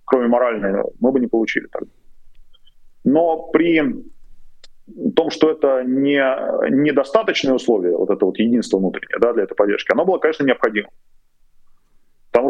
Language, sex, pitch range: Russian, male, 120-195 Hz